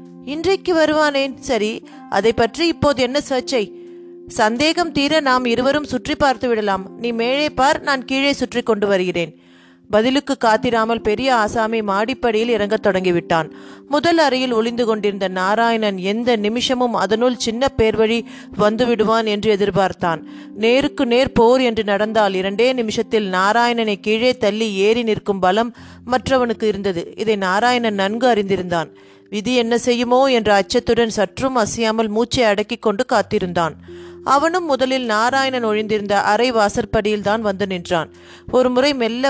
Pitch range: 210-255 Hz